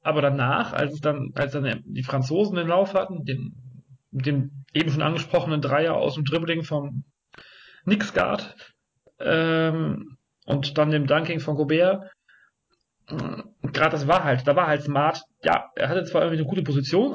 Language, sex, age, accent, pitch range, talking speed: German, male, 40-59, German, 130-160 Hz, 155 wpm